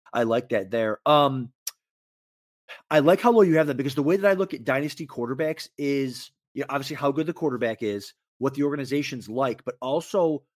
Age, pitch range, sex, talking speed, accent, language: 30-49, 120-150 Hz, male, 205 wpm, American, English